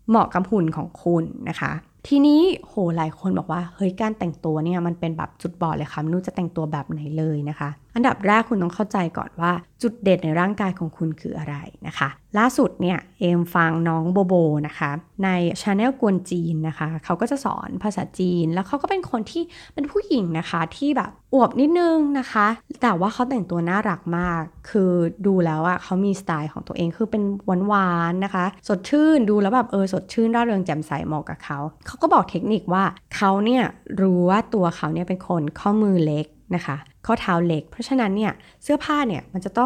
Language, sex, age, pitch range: Thai, female, 20-39, 165-230 Hz